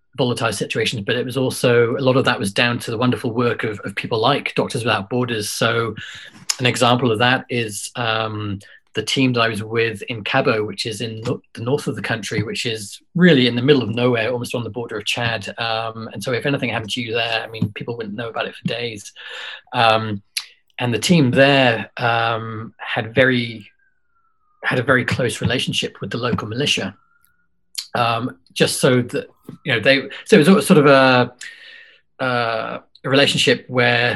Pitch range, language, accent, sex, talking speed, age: 115-130 Hz, English, British, male, 195 wpm, 30-49